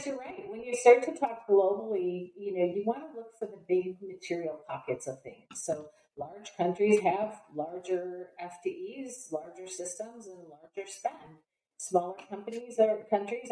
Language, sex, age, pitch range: English, female, 50-69, 165-210 Hz